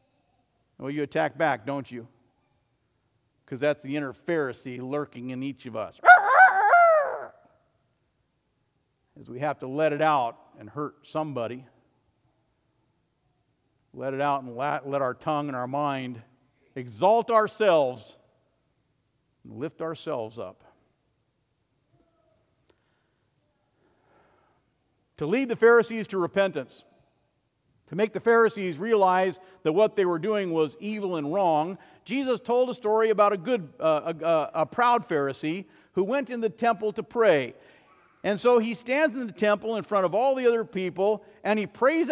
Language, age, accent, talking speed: English, 50-69, American, 140 wpm